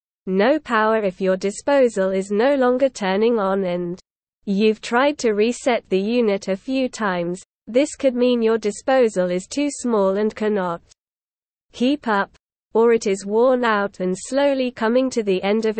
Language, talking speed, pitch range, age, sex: English, 165 wpm, 195-245 Hz, 20-39, female